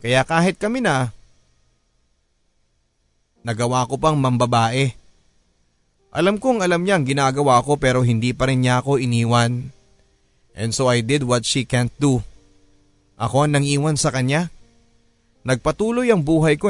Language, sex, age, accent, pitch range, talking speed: Filipino, male, 30-49, native, 115-140 Hz, 135 wpm